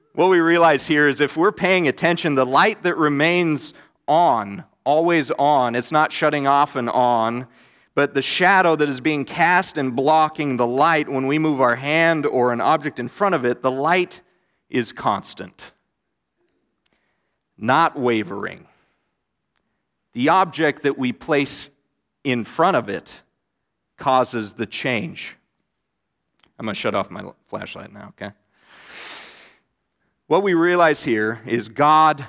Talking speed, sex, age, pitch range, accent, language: 145 wpm, male, 40-59, 125-160 Hz, American, English